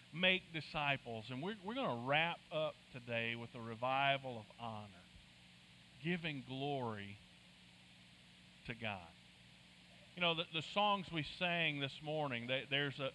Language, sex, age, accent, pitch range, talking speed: English, male, 40-59, American, 125-185 Hz, 135 wpm